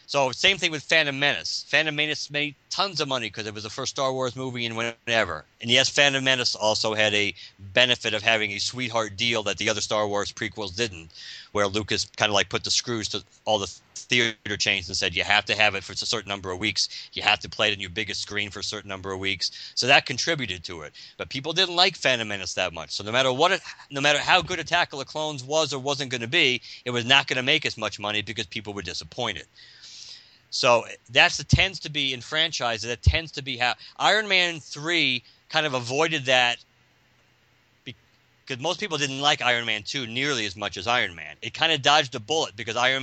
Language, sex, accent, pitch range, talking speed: English, male, American, 105-145 Hz, 235 wpm